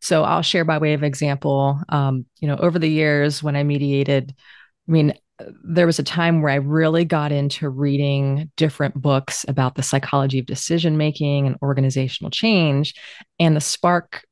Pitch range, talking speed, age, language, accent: 135-160 Hz, 175 wpm, 30-49, English, American